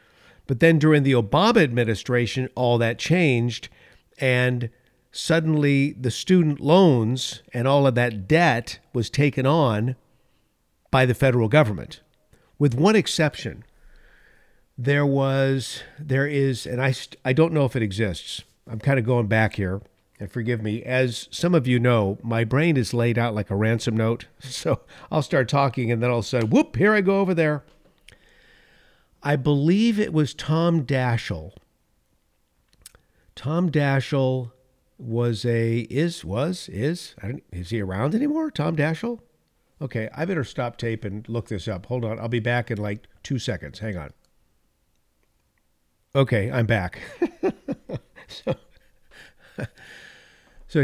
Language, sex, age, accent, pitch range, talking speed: English, male, 50-69, American, 110-145 Hz, 145 wpm